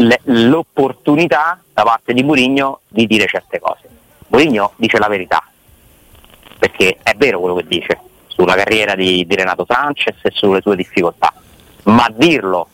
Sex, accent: male, native